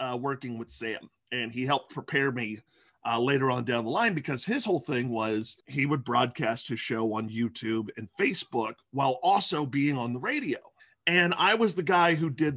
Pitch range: 130-190 Hz